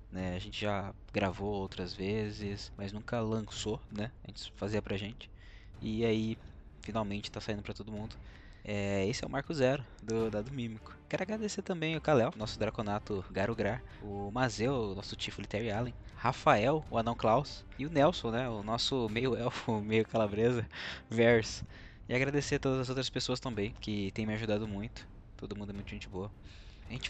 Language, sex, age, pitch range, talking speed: Portuguese, male, 20-39, 105-125 Hz, 180 wpm